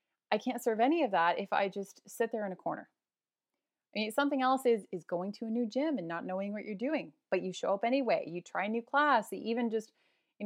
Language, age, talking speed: English, 20-39, 250 wpm